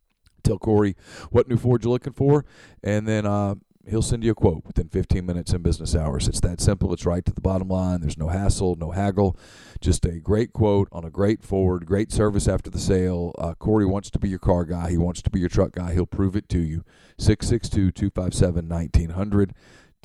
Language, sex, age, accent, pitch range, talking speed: English, male, 40-59, American, 85-105 Hz, 210 wpm